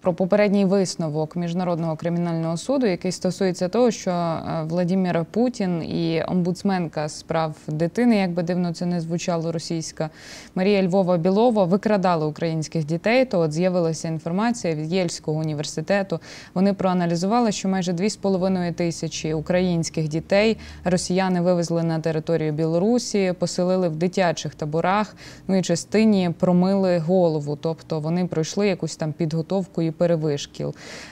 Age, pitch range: 20-39, 160-190 Hz